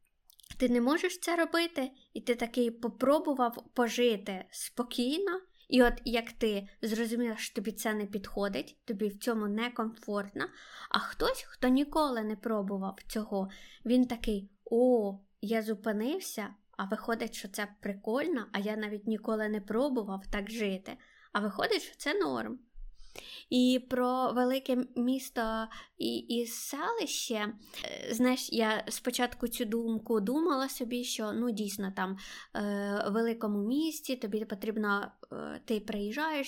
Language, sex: Ukrainian, female